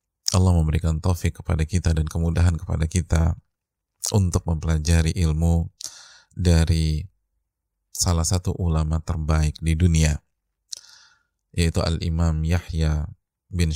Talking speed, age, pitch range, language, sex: 100 wpm, 30-49, 80-90 Hz, Indonesian, male